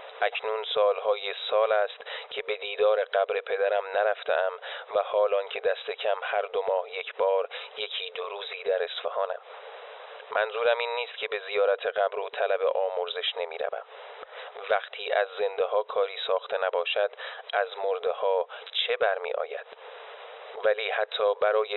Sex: male